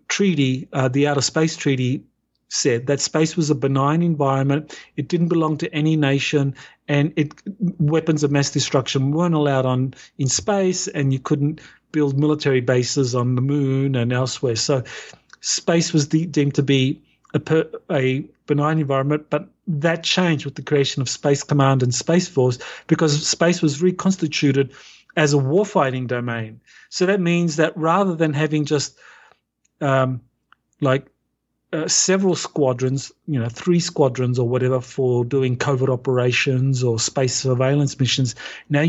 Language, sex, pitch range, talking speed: English, male, 135-165 Hz, 155 wpm